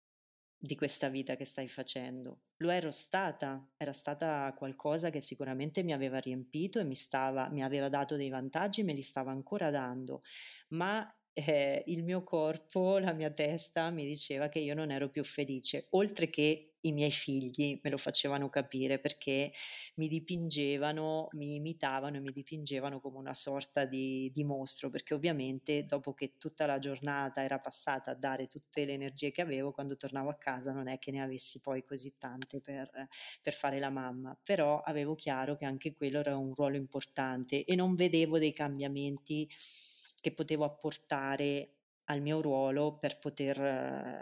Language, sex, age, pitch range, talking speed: Italian, female, 30-49, 135-155 Hz, 170 wpm